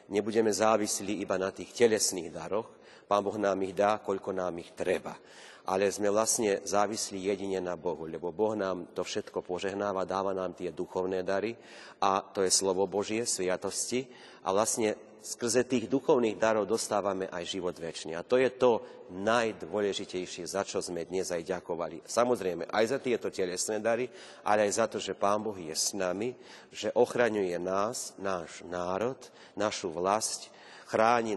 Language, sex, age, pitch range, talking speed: Slovak, male, 40-59, 95-115 Hz, 165 wpm